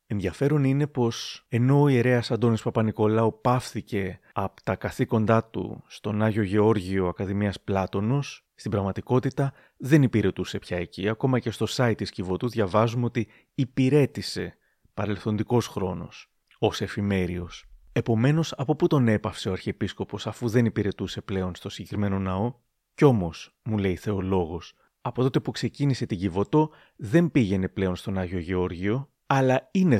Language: Greek